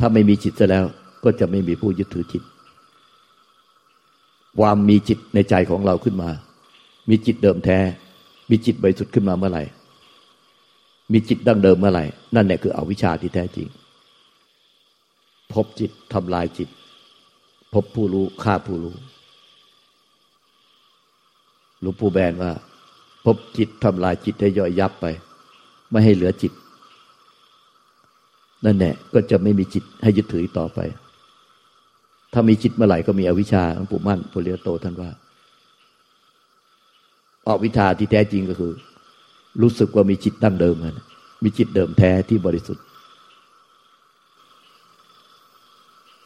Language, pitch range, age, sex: Thai, 90-115 Hz, 60-79, male